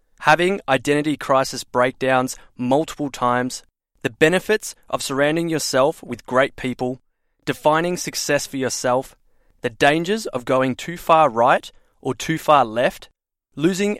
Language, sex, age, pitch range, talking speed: English, male, 20-39, 130-155 Hz, 130 wpm